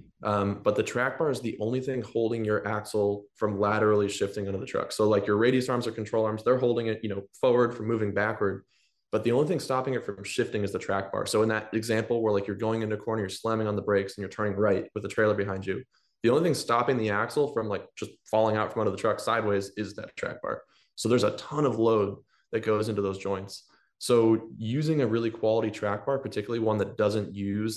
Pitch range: 100-115 Hz